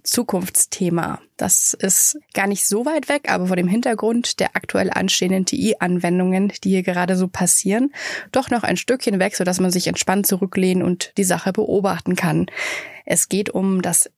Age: 20-39